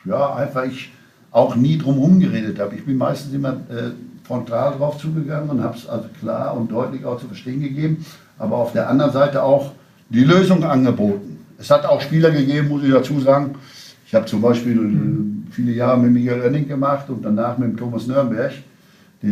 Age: 60-79